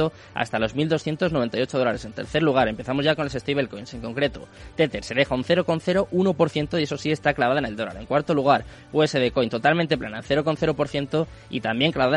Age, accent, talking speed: 20-39, Spanish, 185 wpm